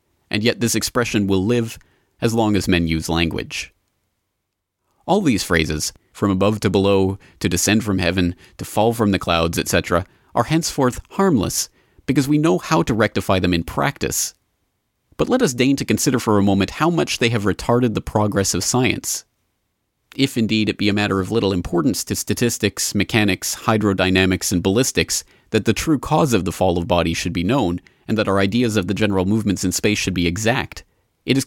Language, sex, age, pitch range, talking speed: English, male, 30-49, 90-115 Hz, 195 wpm